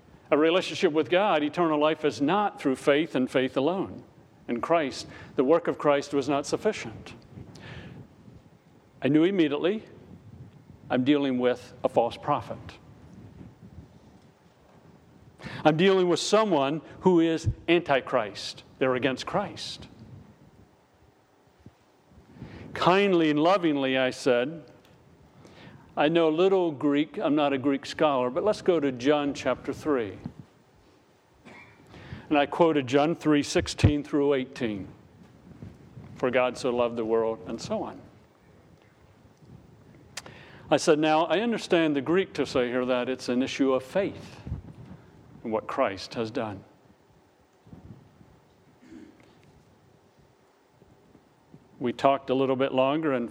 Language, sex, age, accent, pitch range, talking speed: English, male, 50-69, American, 125-155 Hz, 120 wpm